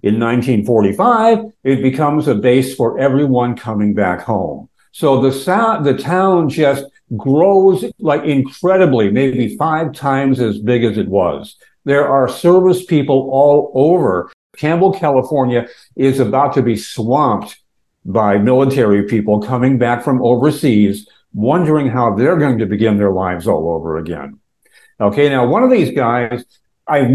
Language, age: English, 60-79